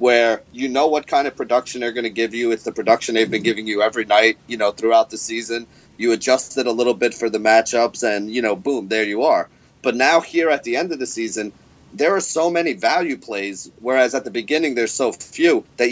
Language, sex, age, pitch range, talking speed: English, male, 30-49, 110-140 Hz, 240 wpm